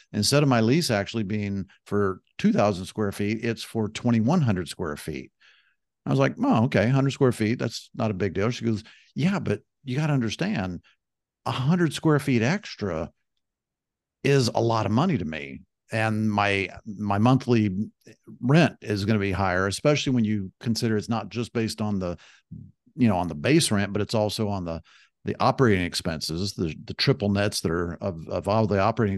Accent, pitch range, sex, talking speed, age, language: American, 100-120 Hz, male, 190 wpm, 50-69, English